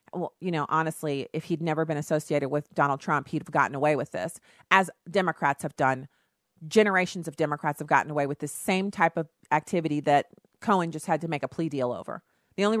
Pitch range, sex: 155-205 Hz, female